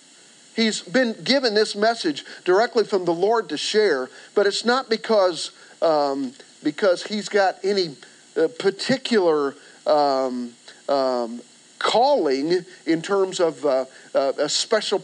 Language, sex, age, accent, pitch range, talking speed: English, male, 50-69, American, 165-225 Hz, 130 wpm